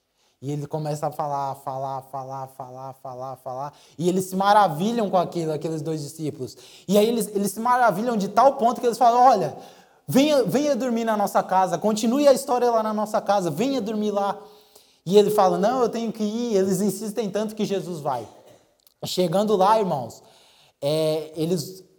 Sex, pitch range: male, 140-210 Hz